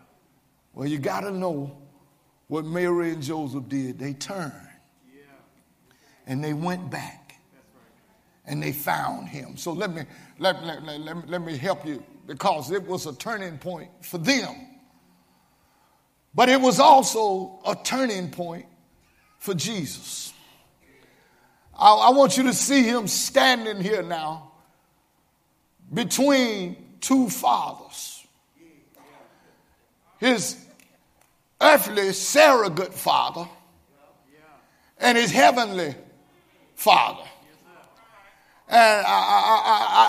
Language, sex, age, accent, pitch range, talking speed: English, male, 50-69, American, 170-260 Hz, 110 wpm